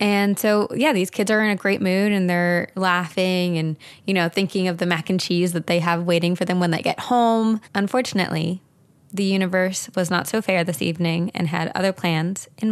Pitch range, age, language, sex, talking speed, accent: 170-195 Hz, 20-39, English, female, 215 wpm, American